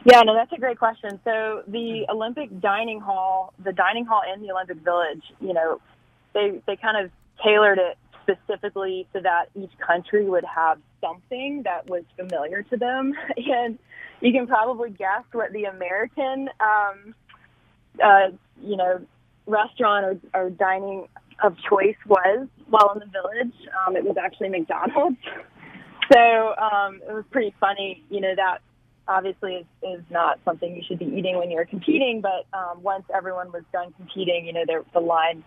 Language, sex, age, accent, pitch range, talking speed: English, female, 20-39, American, 175-215 Hz, 165 wpm